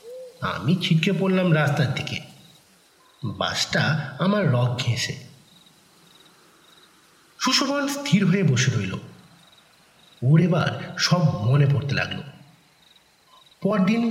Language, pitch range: Bengali, 140-190 Hz